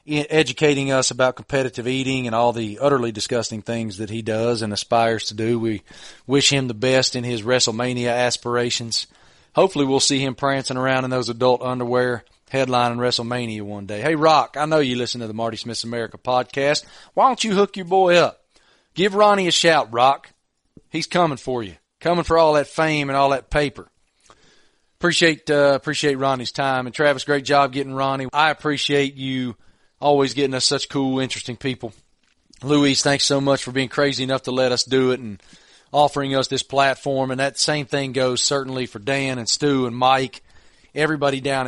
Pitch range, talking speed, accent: 120-140 Hz, 190 wpm, American